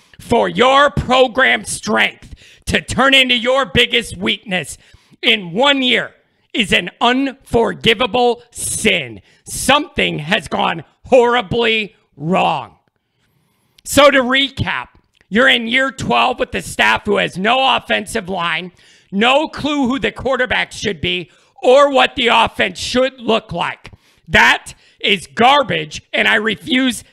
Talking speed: 125 wpm